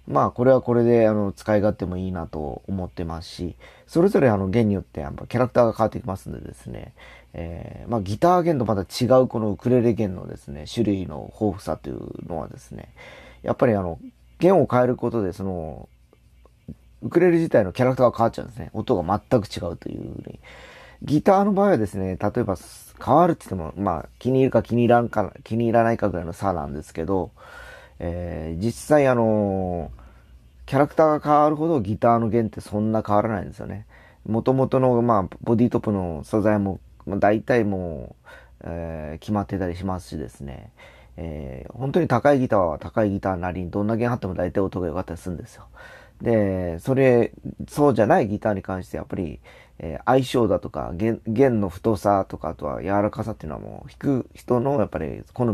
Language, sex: Japanese, male